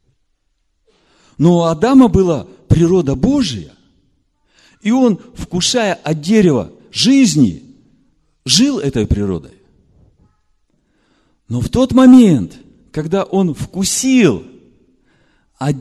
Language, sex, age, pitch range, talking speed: Russian, male, 50-69, 120-180 Hz, 85 wpm